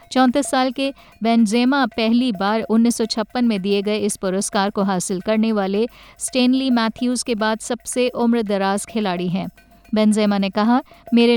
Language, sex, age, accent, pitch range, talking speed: Hindi, female, 50-69, native, 205-245 Hz, 155 wpm